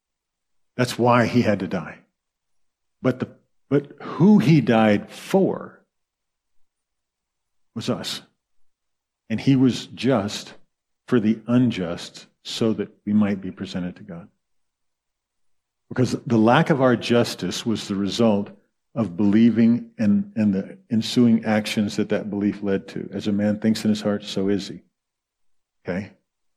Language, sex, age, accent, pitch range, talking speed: English, male, 50-69, American, 105-135 Hz, 140 wpm